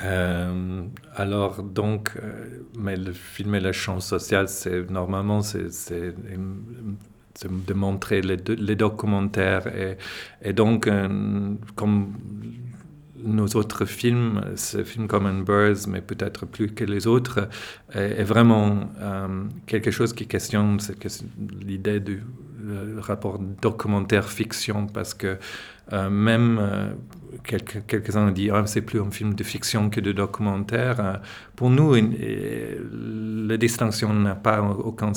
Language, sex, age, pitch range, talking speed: French, male, 40-59, 100-115 Hz, 140 wpm